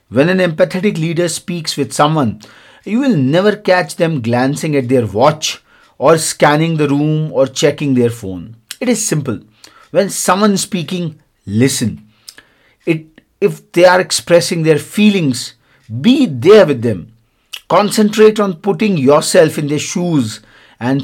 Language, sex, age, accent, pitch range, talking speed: English, male, 50-69, Indian, 120-170 Hz, 145 wpm